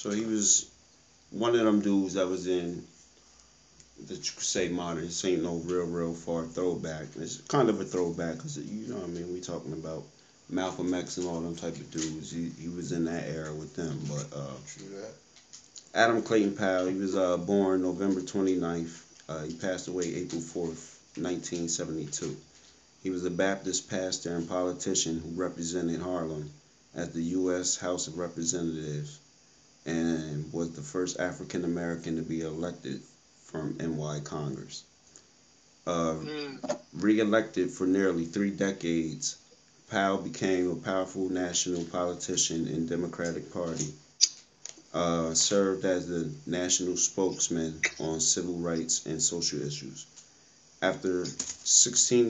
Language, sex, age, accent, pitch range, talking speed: English, male, 30-49, American, 80-95 Hz, 140 wpm